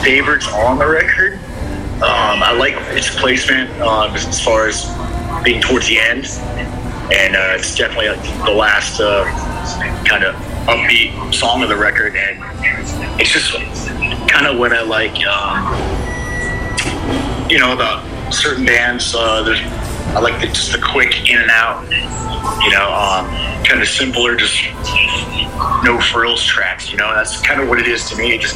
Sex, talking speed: male, 160 wpm